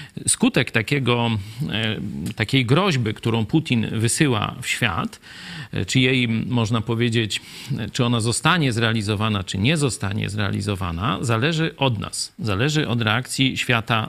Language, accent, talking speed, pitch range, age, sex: Polish, native, 115 wpm, 115-155 Hz, 40-59, male